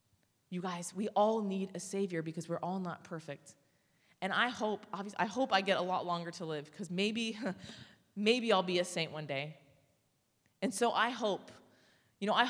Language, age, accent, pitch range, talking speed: English, 30-49, American, 155-195 Hz, 195 wpm